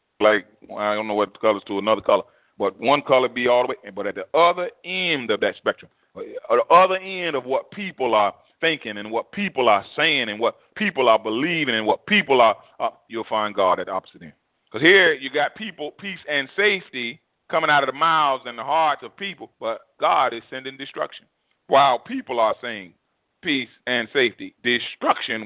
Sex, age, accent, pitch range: male, 30-49, American, 120-175 Hz